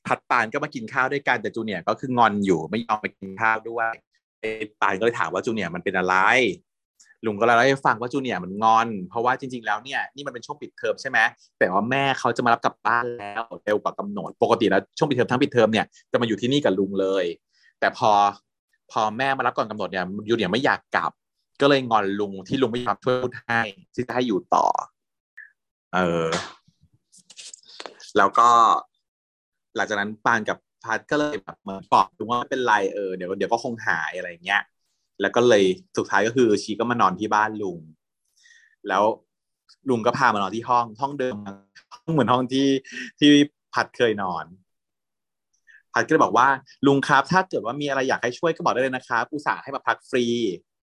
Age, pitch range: 30-49, 105-135 Hz